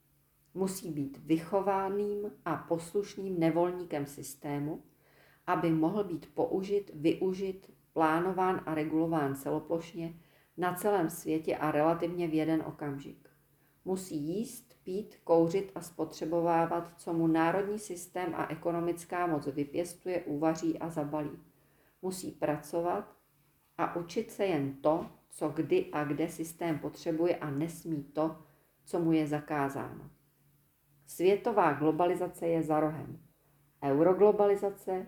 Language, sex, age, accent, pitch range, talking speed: Czech, female, 40-59, native, 150-185 Hz, 115 wpm